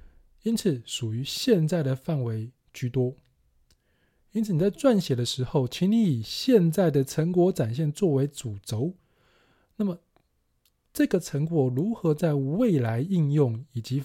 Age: 20-39